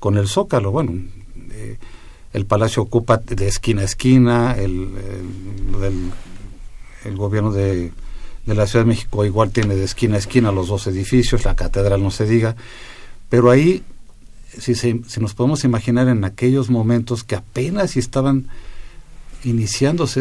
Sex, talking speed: male, 155 wpm